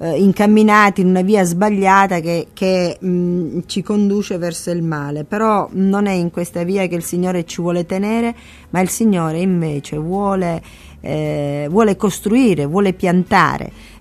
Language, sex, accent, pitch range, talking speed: Italian, female, native, 175-210 Hz, 140 wpm